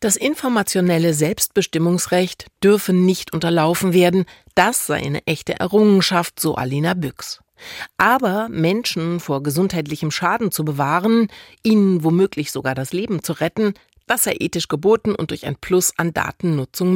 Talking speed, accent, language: 140 wpm, German, German